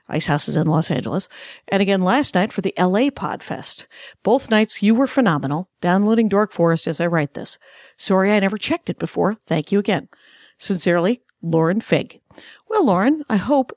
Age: 50-69